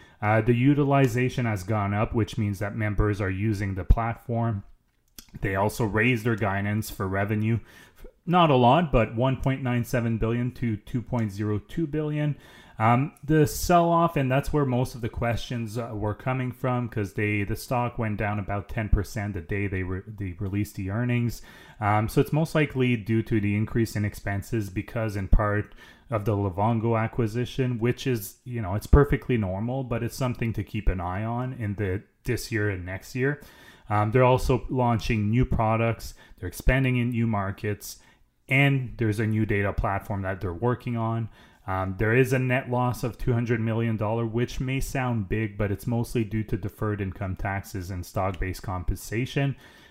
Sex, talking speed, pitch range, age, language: male, 175 wpm, 105-125 Hz, 20-39, English